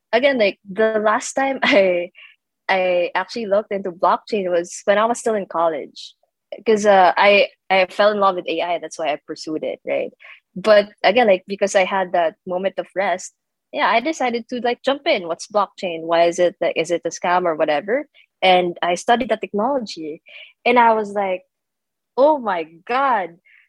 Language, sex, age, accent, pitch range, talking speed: English, female, 20-39, Filipino, 175-240 Hz, 185 wpm